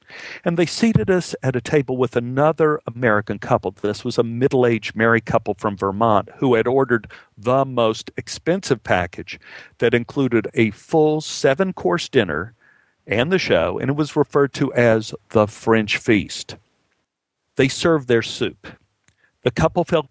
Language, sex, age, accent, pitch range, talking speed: English, male, 50-69, American, 115-145 Hz, 150 wpm